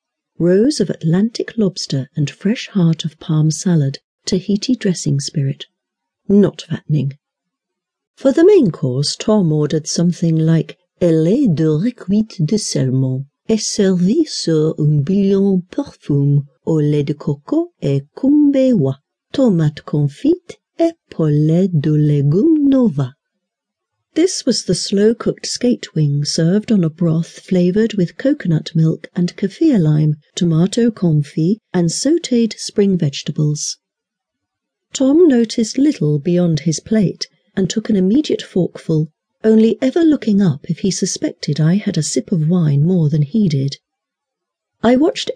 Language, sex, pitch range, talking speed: English, female, 155-220 Hz, 130 wpm